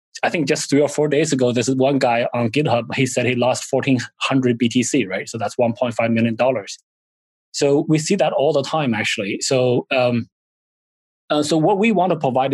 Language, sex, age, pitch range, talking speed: English, male, 20-39, 125-150 Hz, 220 wpm